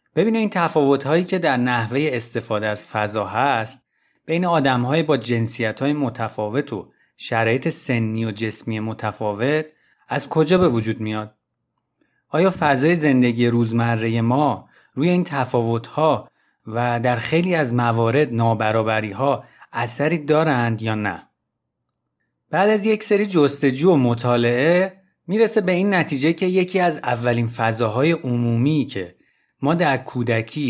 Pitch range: 115-160 Hz